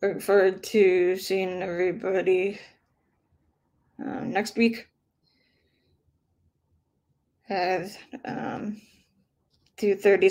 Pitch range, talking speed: 190-225 Hz, 75 wpm